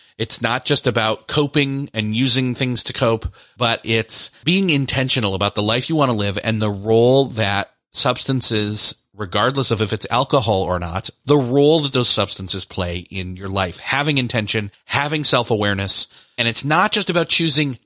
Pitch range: 100-130 Hz